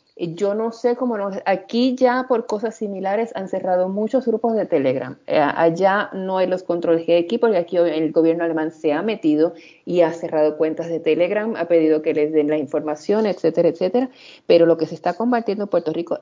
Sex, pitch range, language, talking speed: female, 170-240 Hz, Spanish, 205 wpm